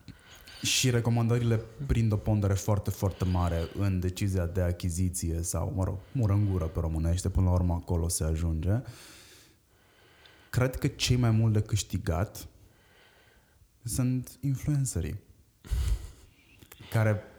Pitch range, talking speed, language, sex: 90-115 Hz, 120 wpm, Romanian, male